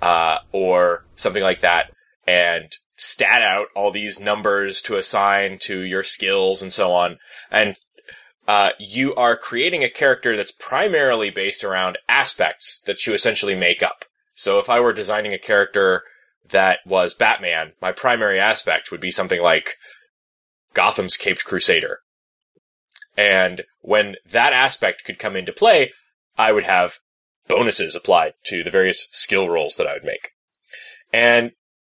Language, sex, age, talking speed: English, male, 20-39, 150 wpm